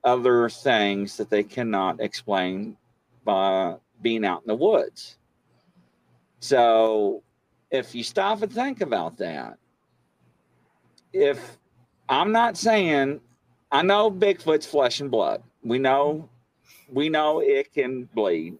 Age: 50-69